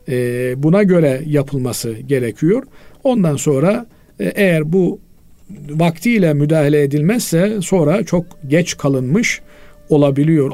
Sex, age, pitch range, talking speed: male, 50-69, 140-185 Hz, 90 wpm